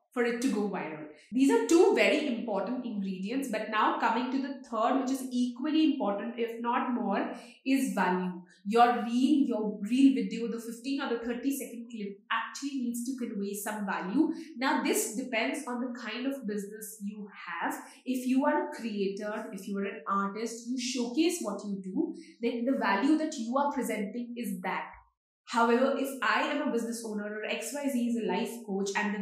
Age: 20-39